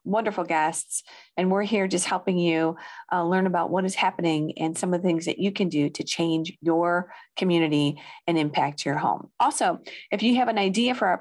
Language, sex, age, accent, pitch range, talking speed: English, female, 40-59, American, 160-205 Hz, 210 wpm